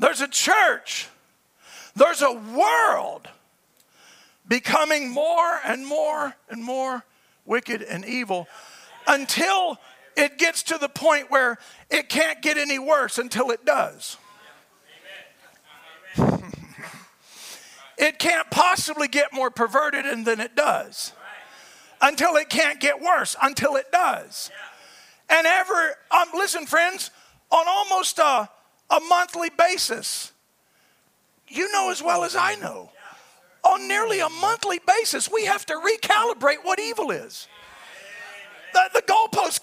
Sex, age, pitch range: male, 40-59, 285-385 Hz